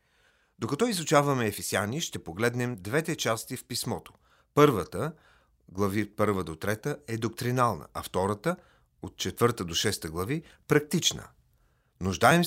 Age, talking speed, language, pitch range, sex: 40-59, 120 wpm, Bulgarian, 100-145 Hz, male